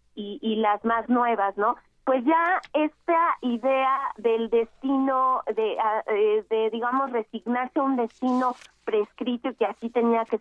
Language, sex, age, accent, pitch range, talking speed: Spanish, female, 30-49, Mexican, 215-260 Hz, 145 wpm